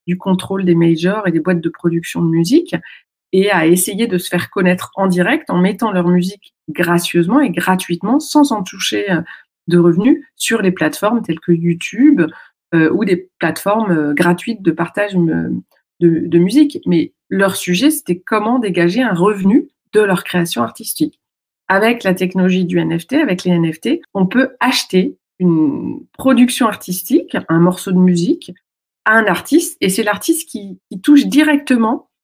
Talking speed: 165 wpm